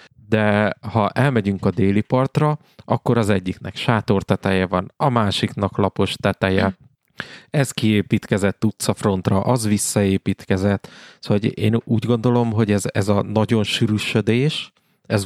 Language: Hungarian